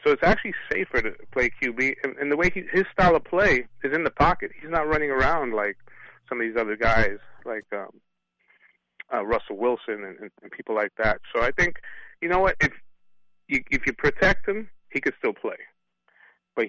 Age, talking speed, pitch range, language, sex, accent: 30-49, 200 wpm, 110-145 Hz, English, male, American